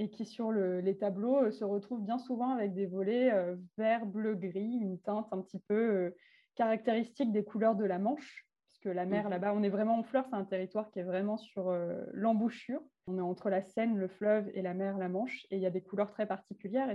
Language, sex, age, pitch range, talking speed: French, female, 20-39, 190-230 Hz, 235 wpm